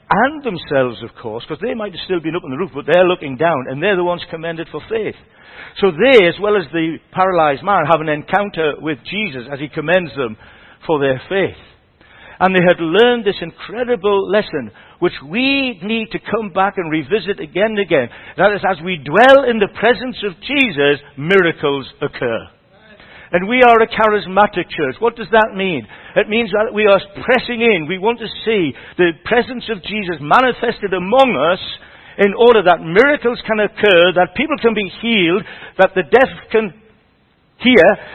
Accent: British